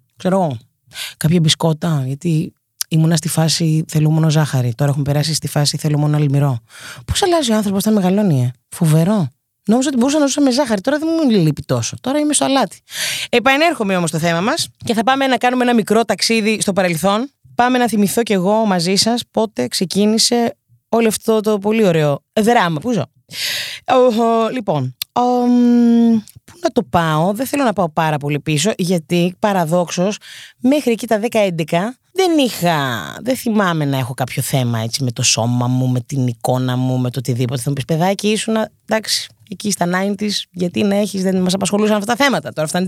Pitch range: 150-230 Hz